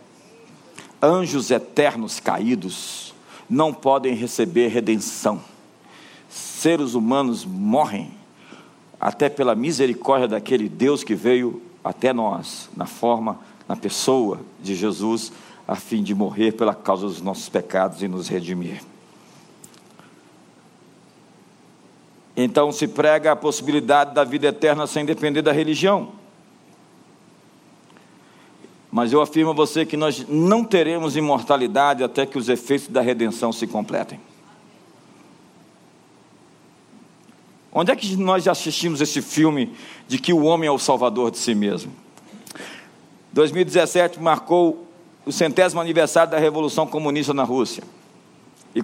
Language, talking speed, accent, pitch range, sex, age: Portuguese, 120 wpm, Brazilian, 130-175 Hz, male, 50-69